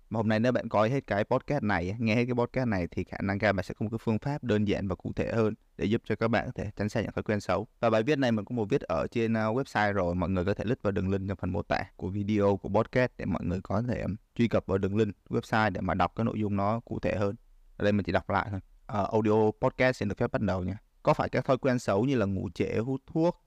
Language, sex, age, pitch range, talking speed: Vietnamese, male, 20-39, 100-130 Hz, 315 wpm